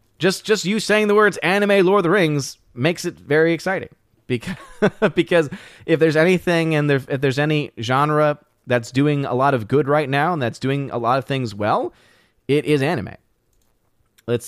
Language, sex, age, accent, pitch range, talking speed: English, male, 20-39, American, 125-165 Hz, 190 wpm